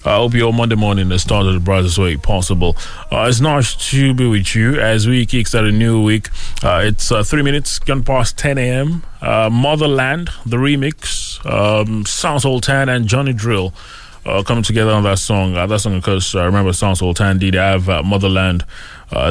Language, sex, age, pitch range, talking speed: English, male, 20-39, 85-105 Hz, 210 wpm